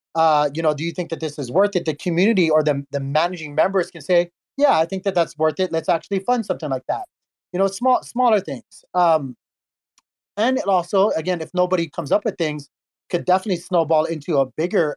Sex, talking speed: male, 220 wpm